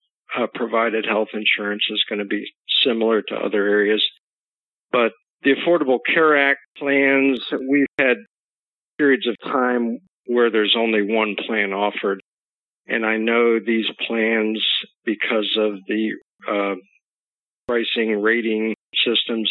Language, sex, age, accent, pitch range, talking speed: English, male, 50-69, American, 105-120 Hz, 130 wpm